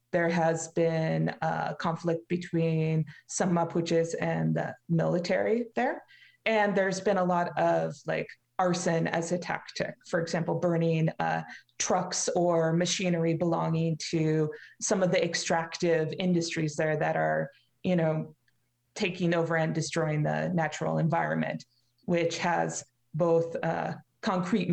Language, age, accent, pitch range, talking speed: English, 30-49, American, 155-180 Hz, 130 wpm